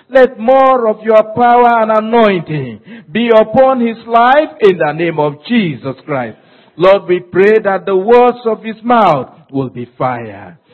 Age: 50-69